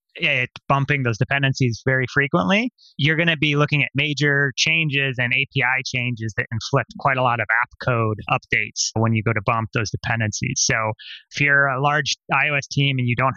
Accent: American